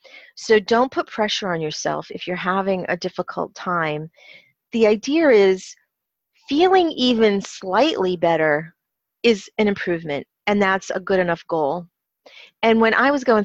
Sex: female